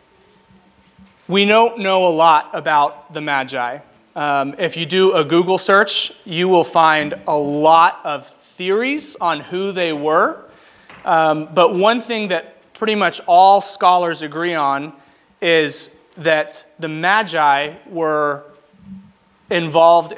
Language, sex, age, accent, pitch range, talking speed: English, male, 30-49, American, 155-195 Hz, 130 wpm